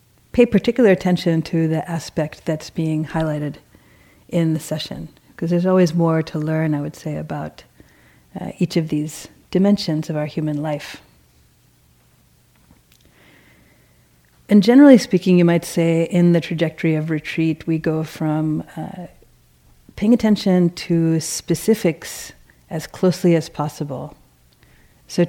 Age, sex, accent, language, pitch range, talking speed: 40-59, female, American, English, 150-175 Hz, 130 wpm